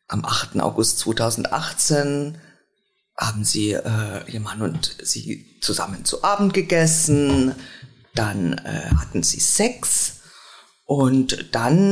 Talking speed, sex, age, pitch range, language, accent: 110 wpm, female, 50-69, 135-185 Hz, German, German